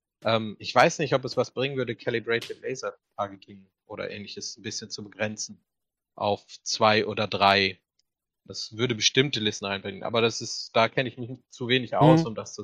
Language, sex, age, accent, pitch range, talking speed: German, male, 30-49, German, 110-130 Hz, 185 wpm